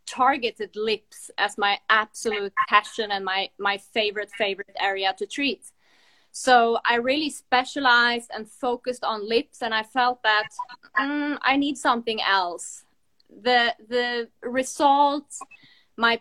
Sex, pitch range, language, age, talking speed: female, 215-265 Hz, English, 20-39, 130 wpm